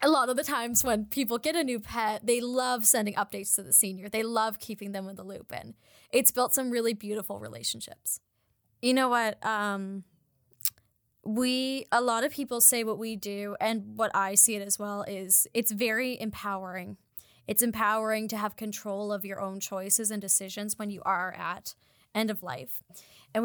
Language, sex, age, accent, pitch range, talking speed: English, female, 10-29, American, 200-235 Hz, 190 wpm